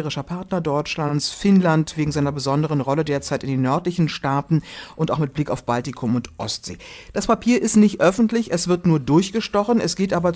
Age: 60-79